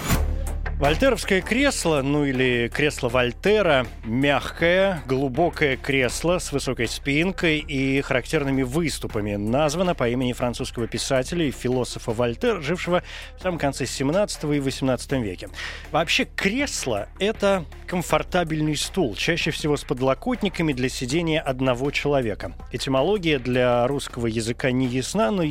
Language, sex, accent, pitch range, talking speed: Russian, male, native, 125-165 Hz, 120 wpm